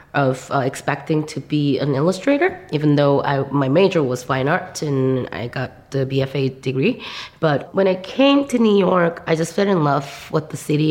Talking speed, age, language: 195 wpm, 20-39, English